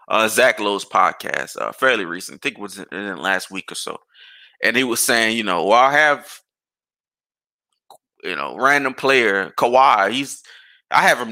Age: 20-39